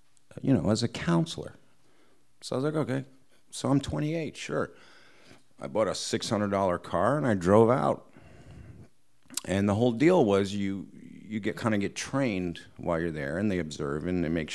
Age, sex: 50-69, male